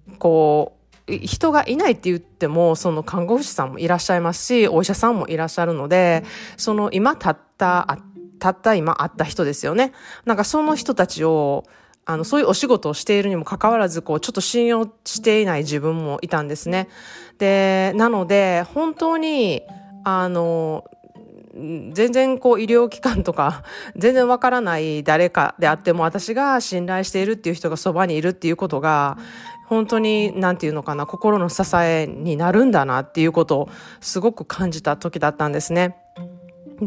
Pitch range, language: 160-215 Hz, Japanese